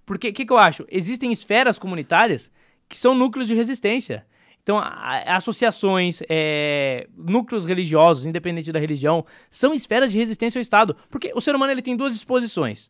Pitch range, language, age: 170-245 Hz, Portuguese, 20-39